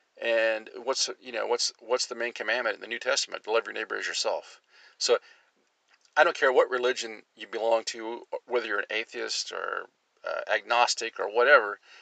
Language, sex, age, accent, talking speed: English, male, 40-59, American, 185 wpm